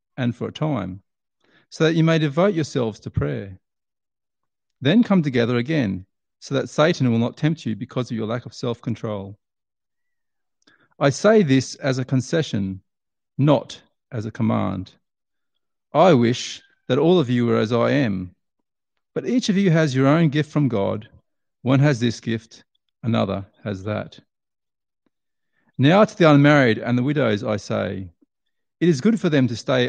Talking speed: 165 wpm